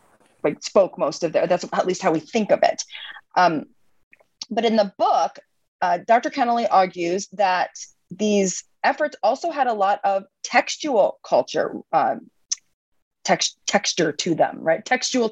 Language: English